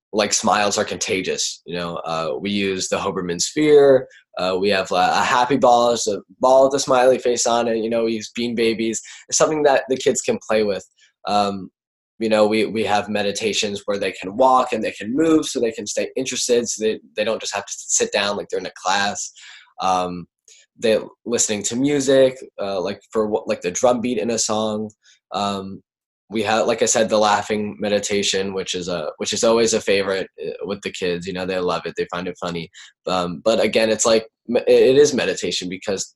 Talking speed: 210 wpm